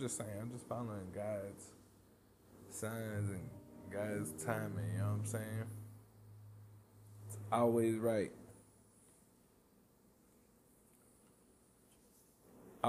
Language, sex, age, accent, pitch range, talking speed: English, male, 20-39, American, 100-115 Hz, 85 wpm